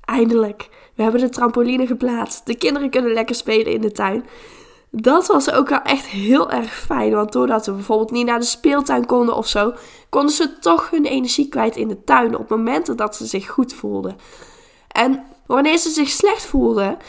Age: 10-29